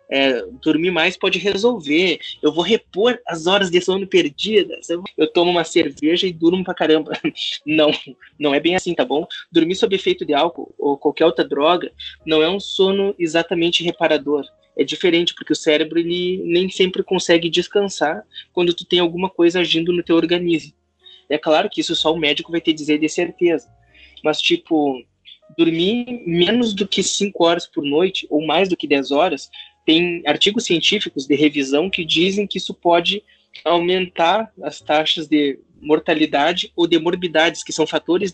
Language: English